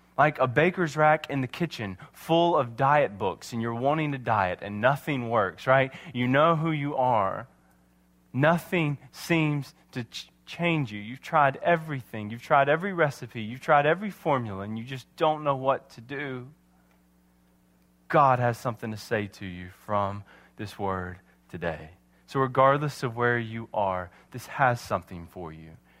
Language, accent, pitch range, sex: English, American, 115-165 Hz, male